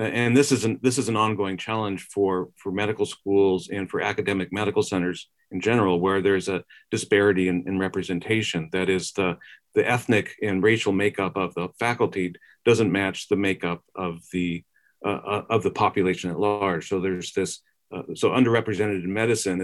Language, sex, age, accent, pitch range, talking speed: English, male, 40-59, American, 95-110 Hz, 175 wpm